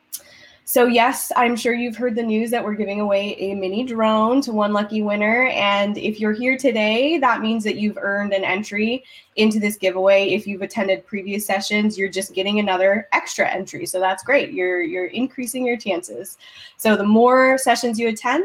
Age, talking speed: 10-29, 190 wpm